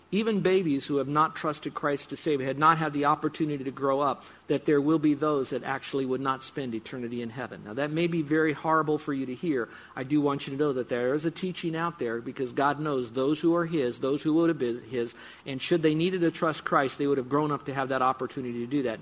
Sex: male